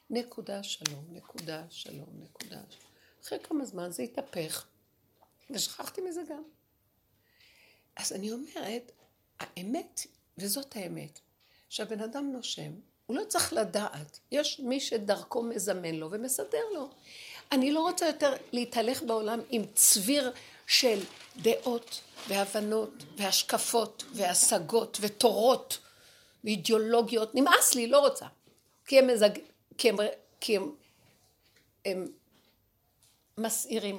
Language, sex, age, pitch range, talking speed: Hebrew, female, 60-79, 205-275 Hz, 110 wpm